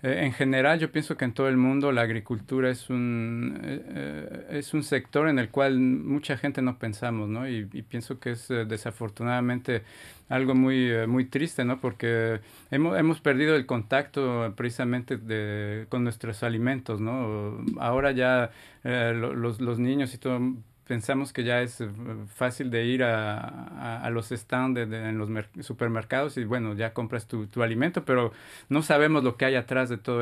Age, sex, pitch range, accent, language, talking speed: 40-59, male, 115-135 Hz, Mexican, Spanish, 180 wpm